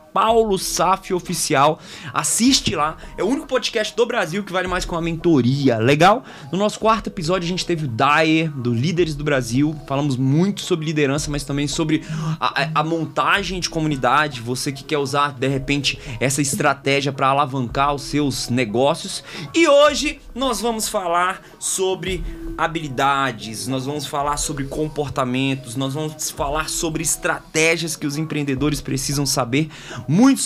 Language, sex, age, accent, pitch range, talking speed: Portuguese, male, 20-39, Brazilian, 145-190 Hz, 155 wpm